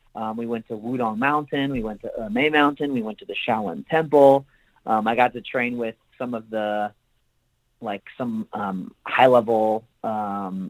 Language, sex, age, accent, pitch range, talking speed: English, male, 30-49, American, 115-145 Hz, 180 wpm